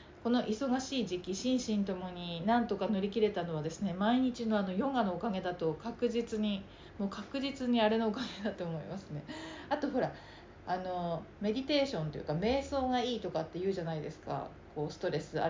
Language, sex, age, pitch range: Japanese, female, 40-59, 175-245 Hz